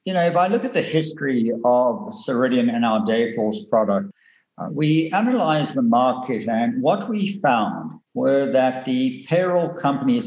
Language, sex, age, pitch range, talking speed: English, male, 60-79, 125-200 Hz, 165 wpm